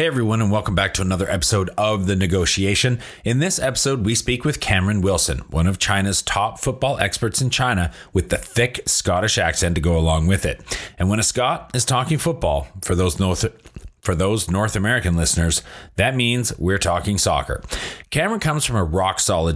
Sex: male